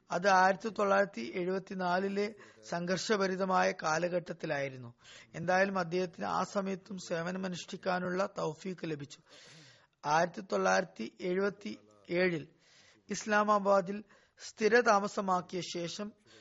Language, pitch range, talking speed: Malayalam, 170-200 Hz, 75 wpm